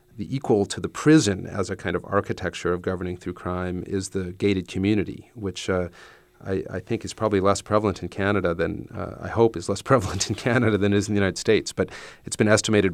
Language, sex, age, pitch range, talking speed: English, male, 40-59, 90-105 Hz, 225 wpm